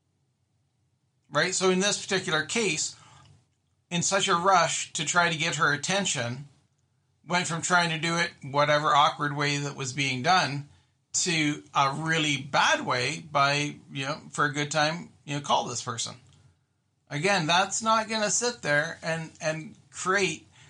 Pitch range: 130-180 Hz